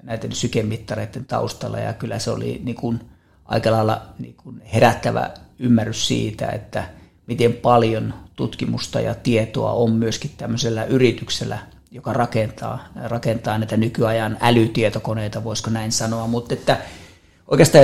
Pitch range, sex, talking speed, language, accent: 110-125 Hz, male, 120 wpm, Finnish, native